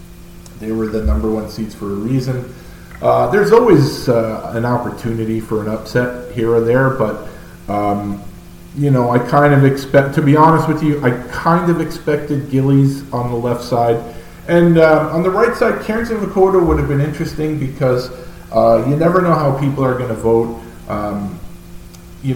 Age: 40-59